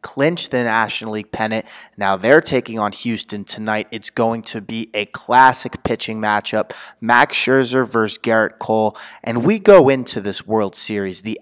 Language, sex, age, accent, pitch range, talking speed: English, male, 20-39, American, 105-125 Hz, 170 wpm